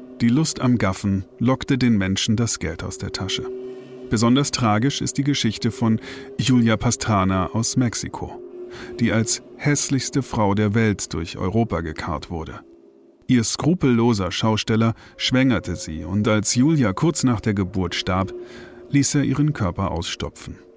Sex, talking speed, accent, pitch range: male, 145 wpm, German, 100-130 Hz